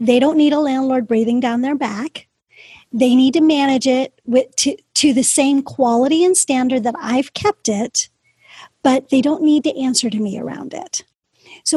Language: English